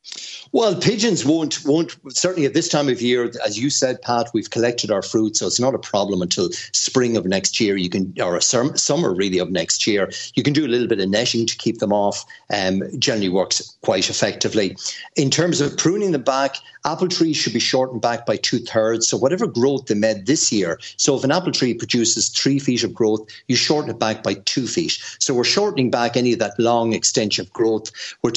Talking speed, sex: 225 wpm, male